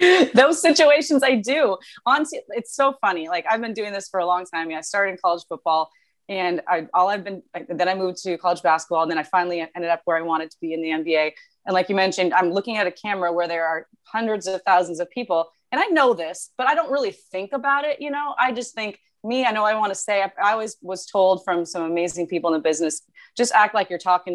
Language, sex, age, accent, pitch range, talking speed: English, female, 30-49, American, 170-225 Hz, 255 wpm